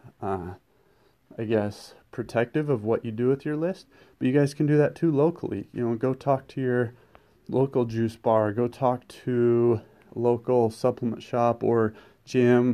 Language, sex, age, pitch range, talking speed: English, male, 30-49, 115-130 Hz, 170 wpm